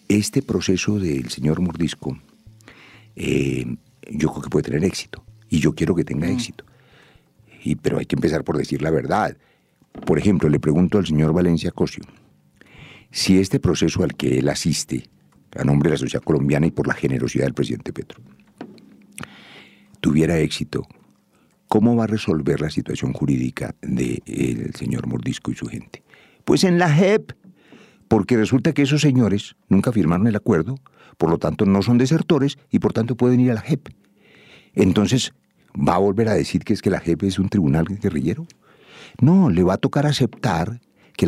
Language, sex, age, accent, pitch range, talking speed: English, male, 60-79, Spanish, 80-125 Hz, 175 wpm